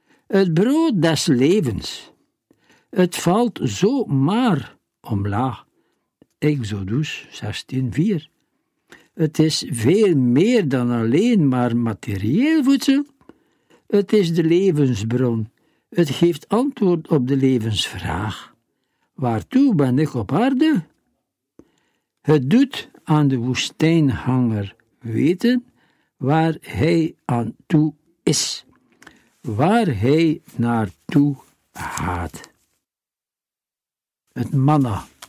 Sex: male